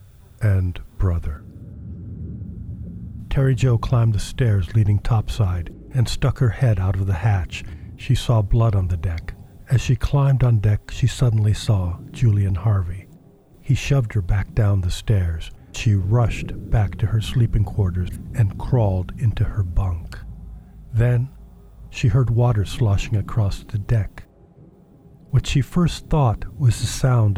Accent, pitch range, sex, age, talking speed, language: American, 95-120 Hz, male, 50-69, 145 wpm, English